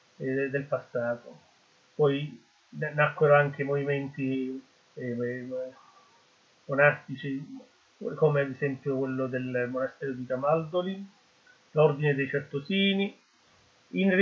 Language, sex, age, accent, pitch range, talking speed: Italian, male, 30-49, native, 145-175 Hz, 85 wpm